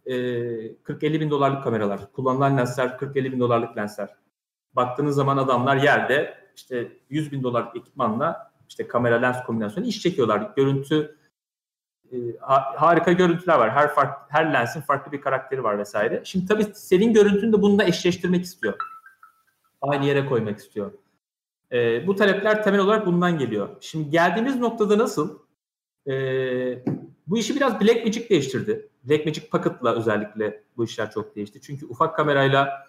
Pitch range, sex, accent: 125-180 Hz, male, native